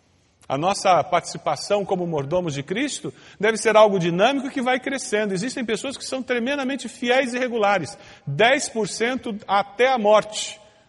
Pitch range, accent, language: 155-235 Hz, Brazilian, Portuguese